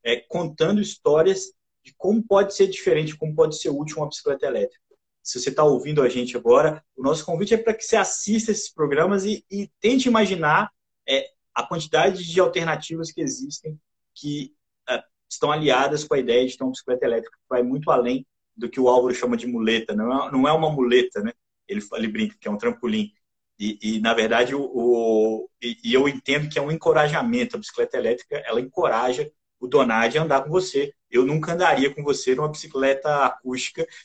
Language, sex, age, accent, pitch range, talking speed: Portuguese, male, 20-39, Brazilian, 135-215 Hz, 195 wpm